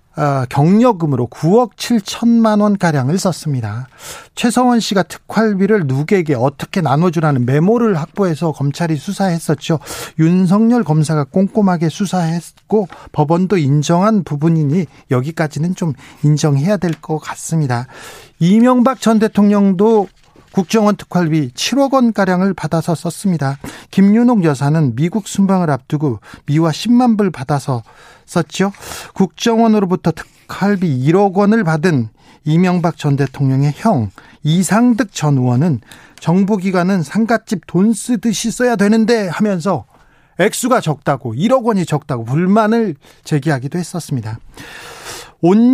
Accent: native